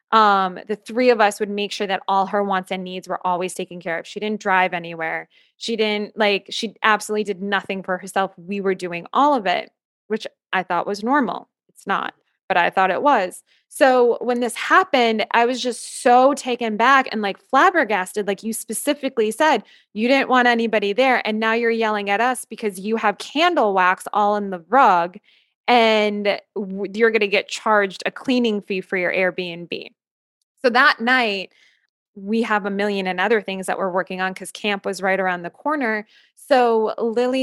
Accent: American